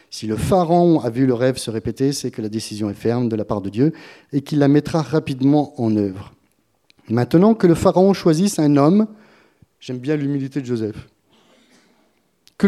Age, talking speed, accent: 30-49, 190 wpm, French